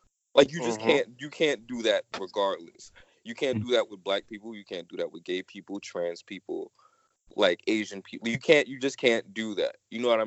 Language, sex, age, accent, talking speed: English, male, 20-39, American, 220 wpm